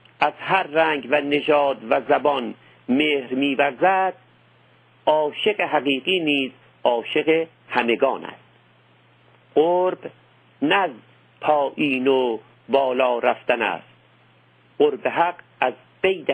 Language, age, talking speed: Persian, 50-69, 95 wpm